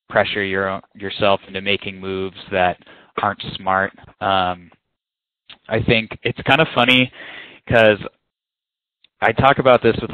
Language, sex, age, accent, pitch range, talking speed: English, male, 20-39, American, 100-125 Hz, 135 wpm